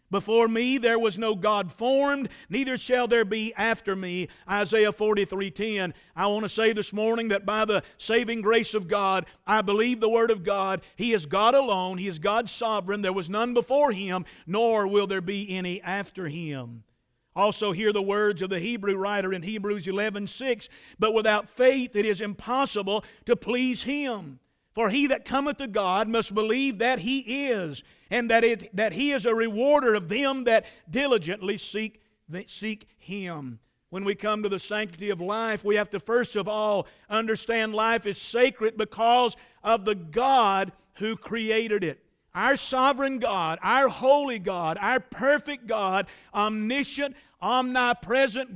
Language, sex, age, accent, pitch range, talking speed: English, male, 50-69, American, 200-240 Hz, 170 wpm